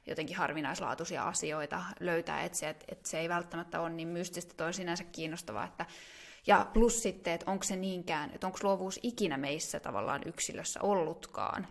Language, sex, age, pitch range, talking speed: Finnish, female, 20-39, 170-200 Hz, 175 wpm